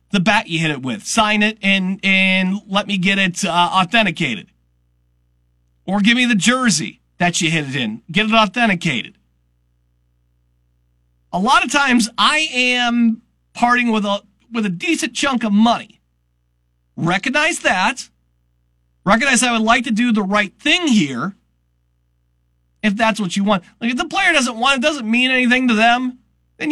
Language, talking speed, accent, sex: English, 170 wpm, American, male